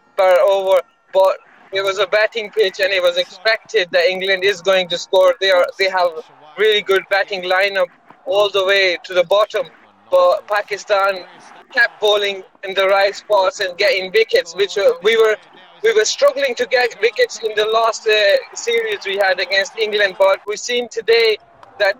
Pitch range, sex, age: 195-285 Hz, male, 20-39